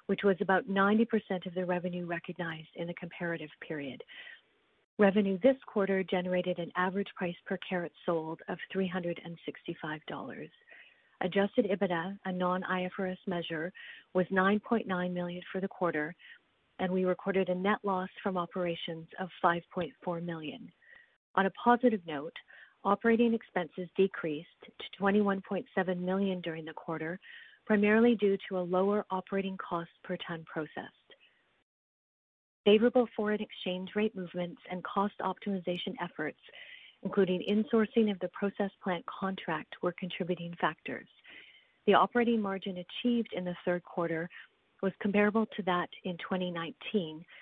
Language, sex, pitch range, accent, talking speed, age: English, female, 175-205 Hz, American, 130 wpm, 40-59